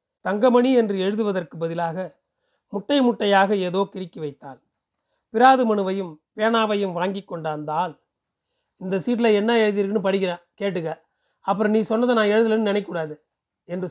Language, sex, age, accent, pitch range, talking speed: Tamil, male, 40-59, native, 185-225 Hz, 115 wpm